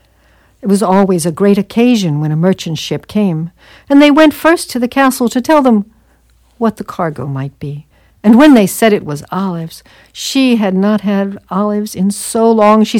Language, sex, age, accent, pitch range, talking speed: English, female, 60-79, American, 165-225 Hz, 195 wpm